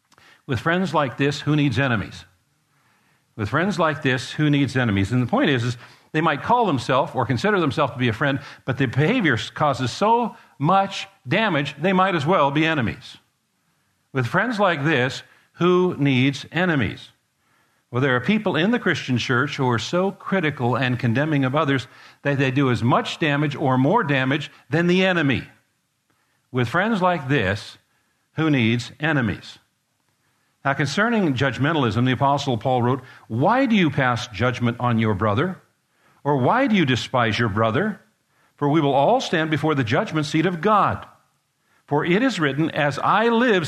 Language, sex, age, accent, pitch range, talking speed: English, male, 60-79, American, 130-175 Hz, 170 wpm